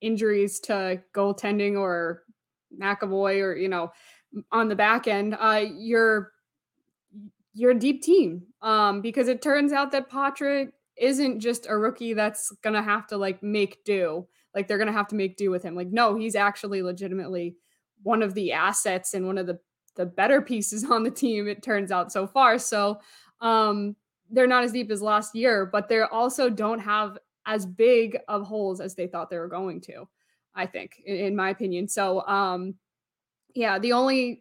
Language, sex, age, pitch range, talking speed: English, female, 20-39, 195-225 Hz, 185 wpm